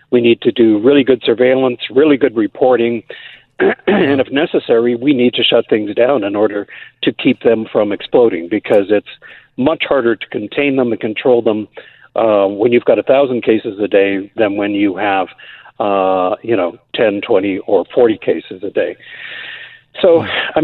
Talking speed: 175 wpm